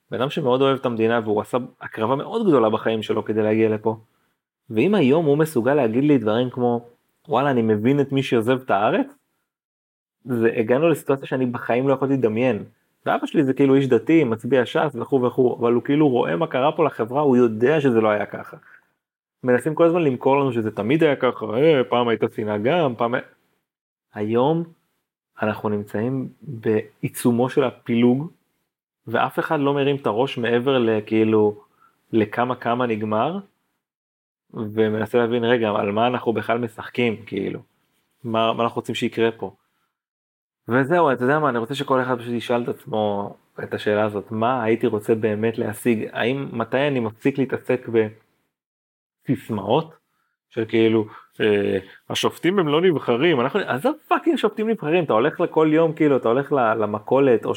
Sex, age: male, 30-49